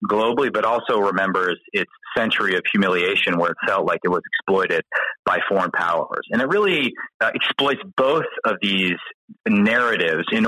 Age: 30-49